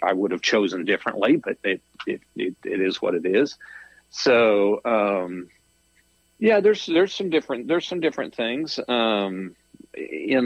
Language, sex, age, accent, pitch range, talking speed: English, male, 50-69, American, 100-125 Hz, 150 wpm